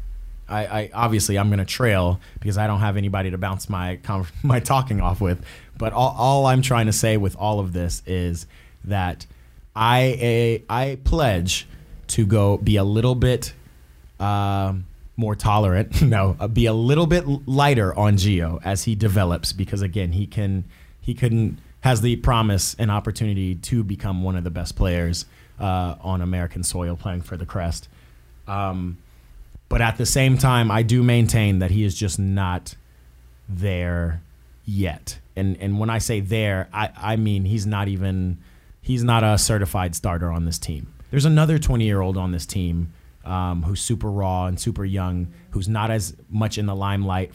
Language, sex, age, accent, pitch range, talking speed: English, male, 20-39, American, 90-115 Hz, 175 wpm